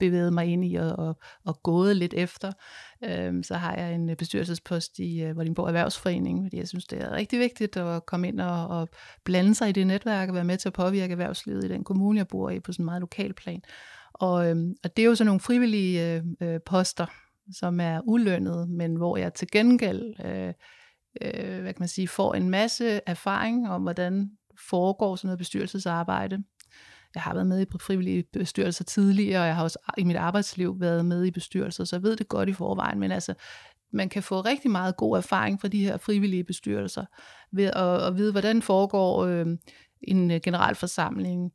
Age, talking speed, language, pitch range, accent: 60-79, 195 wpm, Danish, 170-200 Hz, native